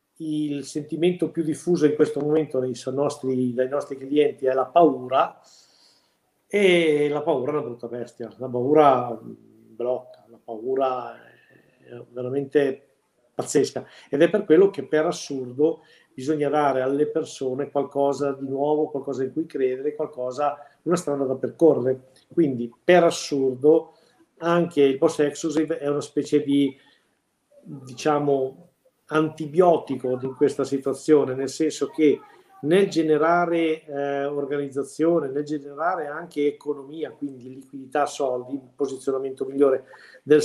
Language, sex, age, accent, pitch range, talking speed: Italian, male, 50-69, native, 135-160 Hz, 125 wpm